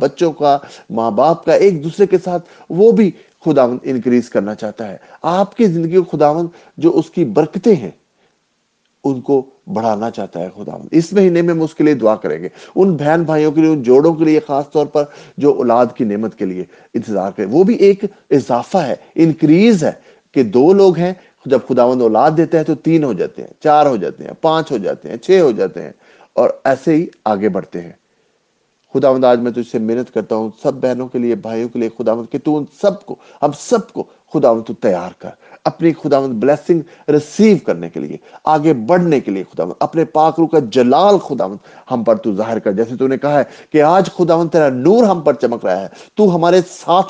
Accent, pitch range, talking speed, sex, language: Indian, 125-175 Hz, 185 wpm, male, English